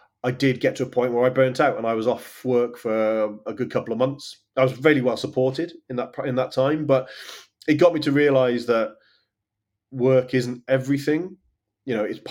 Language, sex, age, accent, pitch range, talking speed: English, male, 30-49, British, 110-130 Hz, 220 wpm